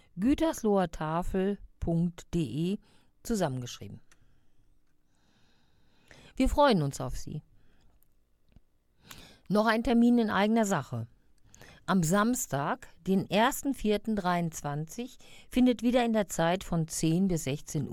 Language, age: German, 50-69